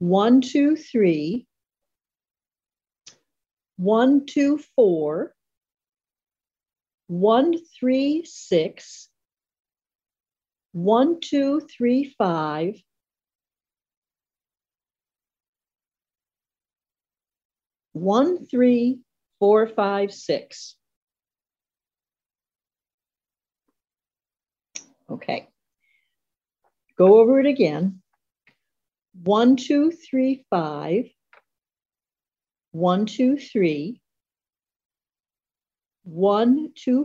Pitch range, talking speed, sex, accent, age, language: 200-270 Hz, 50 wpm, female, American, 60-79, English